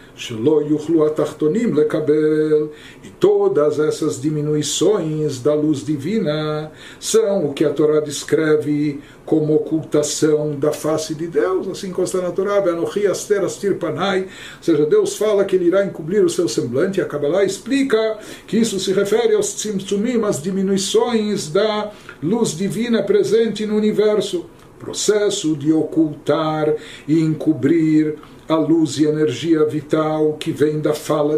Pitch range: 155-205 Hz